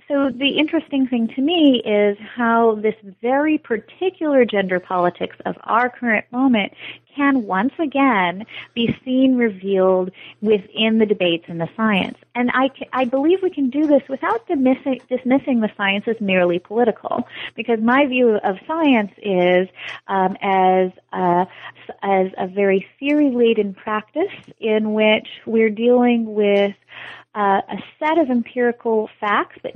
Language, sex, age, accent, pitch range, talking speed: English, female, 30-49, American, 200-260 Hz, 145 wpm